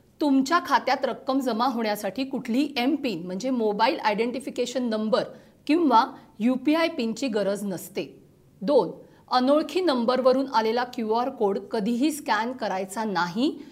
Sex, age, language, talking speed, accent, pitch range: female, 50-69, Marathi, 125 wpm, native, 220-275 Hz